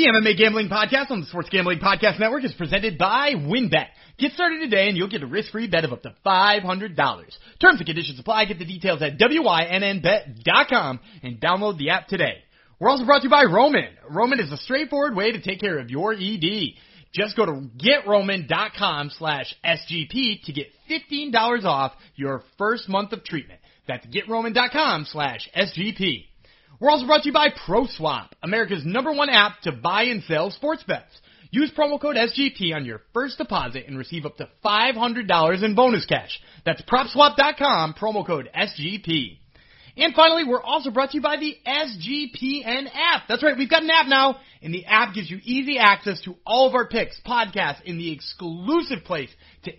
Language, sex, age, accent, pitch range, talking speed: English, male, 30-49, American, 170-260 Hz, 185 wpm